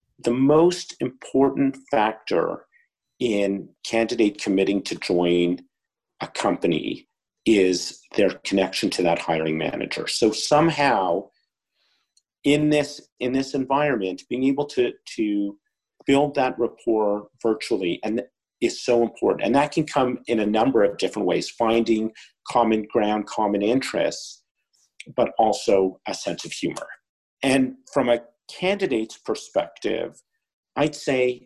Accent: American